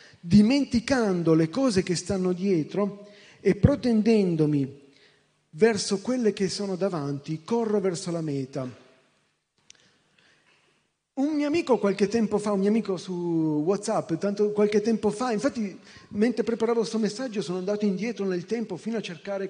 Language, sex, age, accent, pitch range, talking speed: Italian, male, 40-59, native, 165-220 Hz, 140 wpm